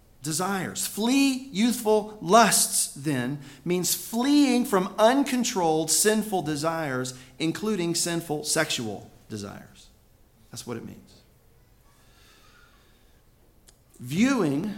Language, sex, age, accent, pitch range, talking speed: English, male, 40-59, American, 125-180 Hz, 80 wpm